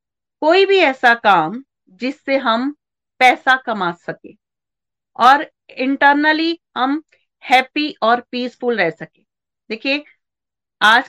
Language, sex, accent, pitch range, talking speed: Hindi, female, native, 205-270 Hz, 105 wpm